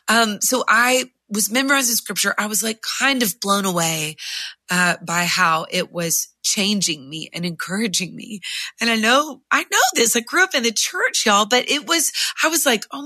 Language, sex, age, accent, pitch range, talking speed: English, female, 20-39, American, 175-235 Hz, 200 wpm